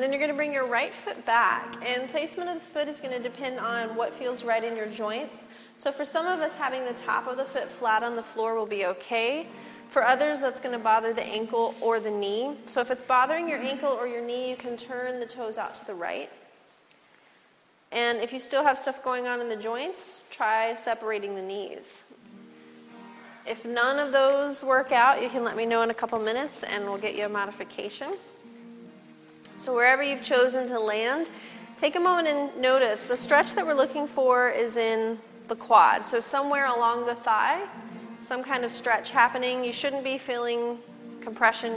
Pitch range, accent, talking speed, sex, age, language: 225-270 Hz, American, 210 wpm, female, 30-49, English